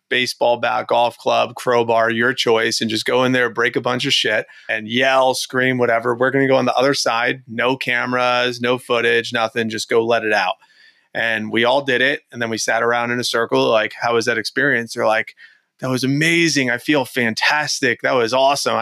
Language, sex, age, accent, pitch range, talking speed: English, male, 30-49, American, 115-135 Hz, 215 wpm